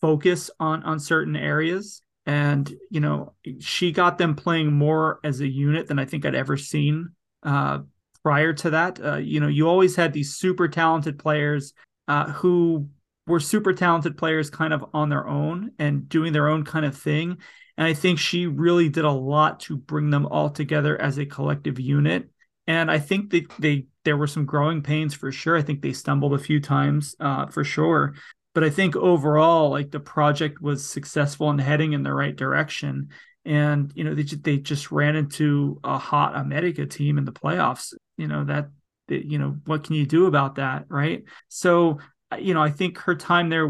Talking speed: 200 wpm